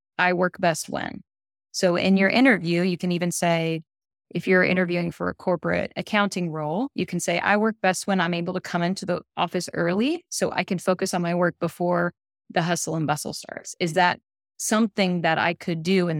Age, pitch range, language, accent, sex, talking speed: 20-39, 170-195 Hz, English, American, female, 210 wpm